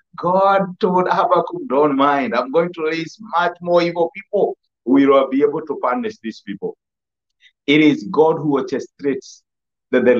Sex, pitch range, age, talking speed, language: male, 140-185 Hz, 50-69, 165 wpm, English